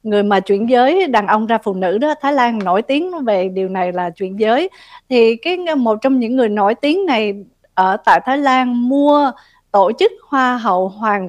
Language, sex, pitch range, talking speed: Vietnamese, female, 210-270 Hz, 205 wpm